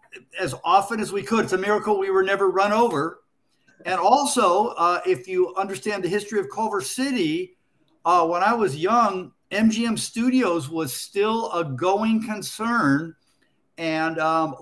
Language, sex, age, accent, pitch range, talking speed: English, male, 50-69, American, 155-210 Hz, 155 wpm